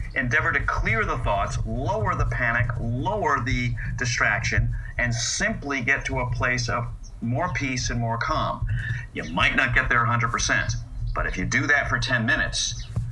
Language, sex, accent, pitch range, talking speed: Romanian, male, American, 115-125 Hz, 170 wpm